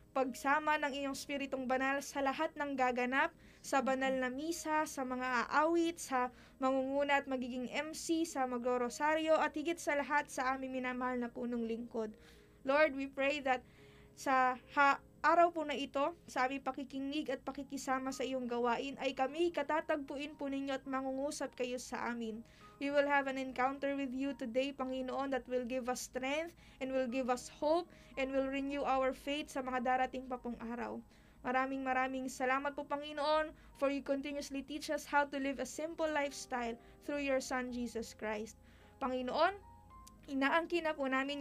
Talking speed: 170 wpm